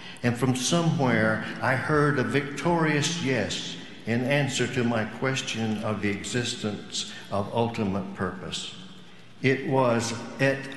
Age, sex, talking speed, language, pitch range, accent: 60-79, male, 125 wpm, English, 100-135 Hz, American